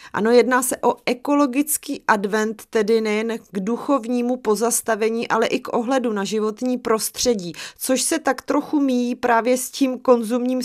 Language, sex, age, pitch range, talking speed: Czech, female, 30-49, 225-255 Hz, 150 wpm